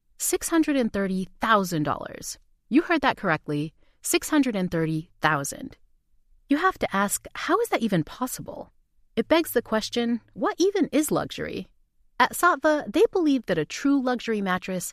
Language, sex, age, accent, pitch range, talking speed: English, female, 30-49, American, 180-300 Hz, 130 wpm